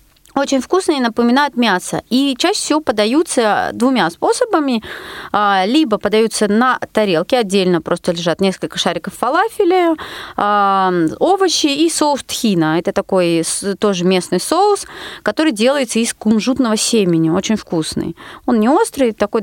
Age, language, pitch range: 30-49, Russian, 200-290 Hz